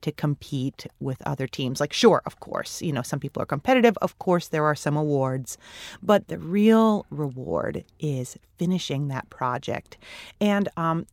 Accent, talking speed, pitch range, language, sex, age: American, 165 wpm, 140-185 Hz, English, female, 30-49